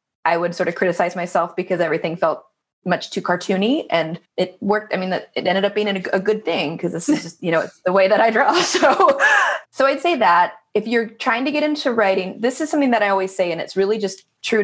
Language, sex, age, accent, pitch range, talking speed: English, female, 20-39, American, 170-210 Hz, 245 wpm